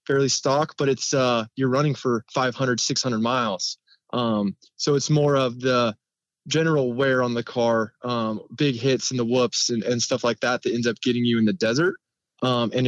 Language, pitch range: English, 115-135 Hz